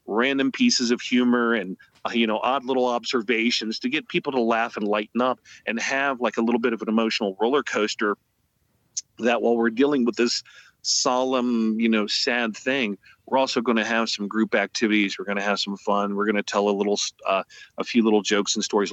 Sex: male